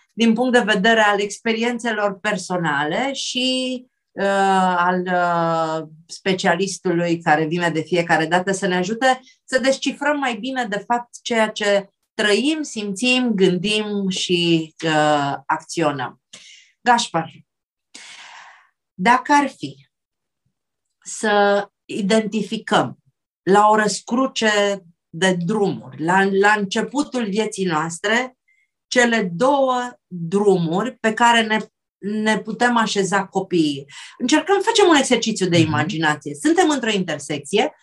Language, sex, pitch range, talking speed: Romanian, female, 175-240 Hz, 105 wpm